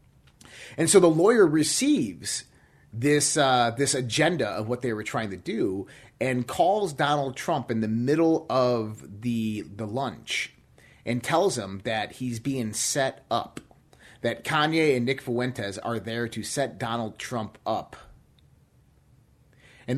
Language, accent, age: English, American, 30-49